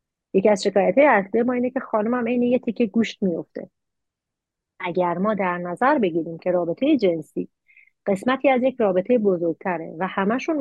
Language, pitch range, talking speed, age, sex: Persian, 175-240 Hz, 165 wpm, 30-49, female